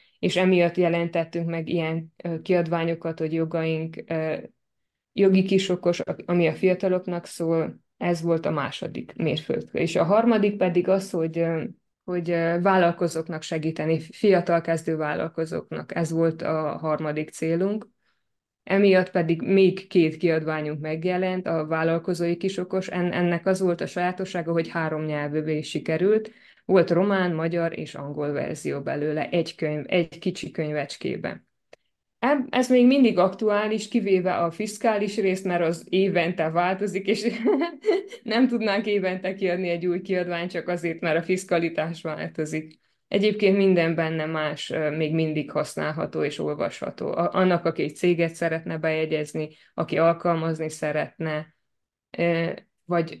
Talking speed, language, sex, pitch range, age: 125 wpm, Hungarian, female, 160-190 Hz, 20-39